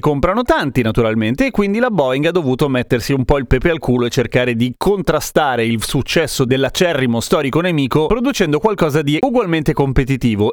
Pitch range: 125-170 Hz